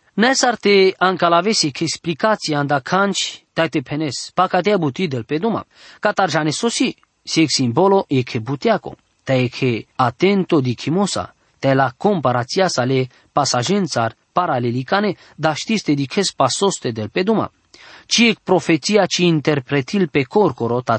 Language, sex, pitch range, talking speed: English, male, 140-195 Hz, 145 wpm